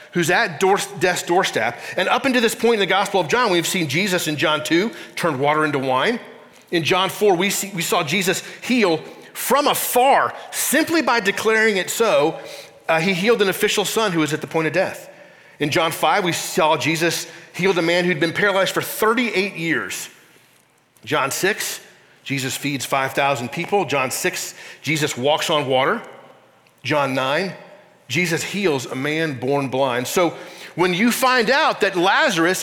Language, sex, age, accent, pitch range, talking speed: English, male, 40-59, American, 155-200 Hz, 175 wpm